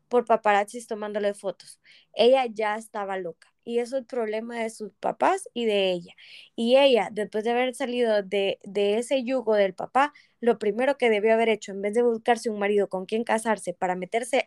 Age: 20-39